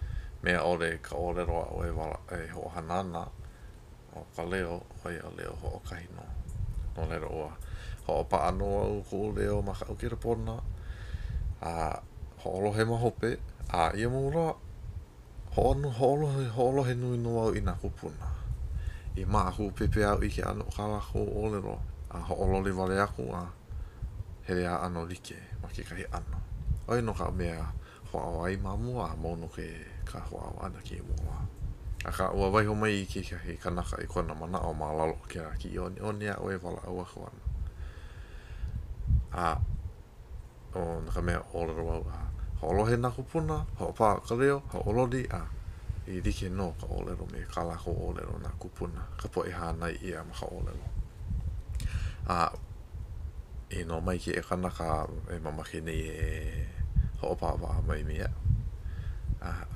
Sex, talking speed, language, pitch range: male, 55 wpm, English, 80-100 Hz